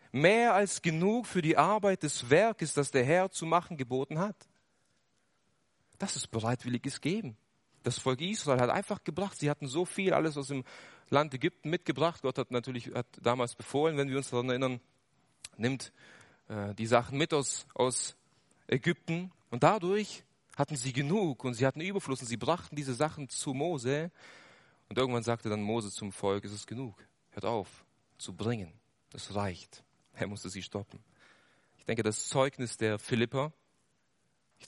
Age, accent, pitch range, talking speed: 30-49, German, 115-150 Hz, 165 wpm